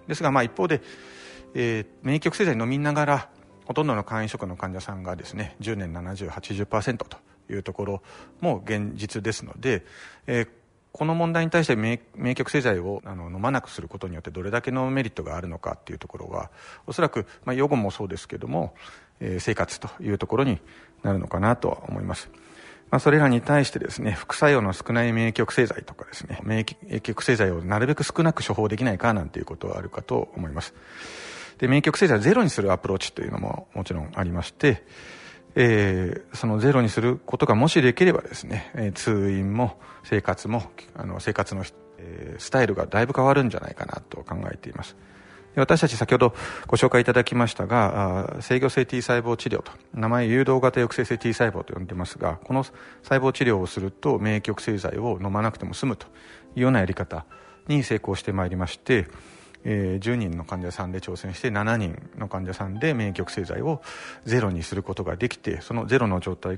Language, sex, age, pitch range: Japanese, male, 40-59, 95-125 Hz